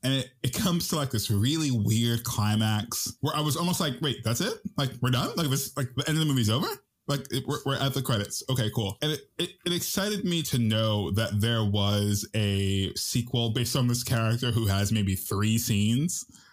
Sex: male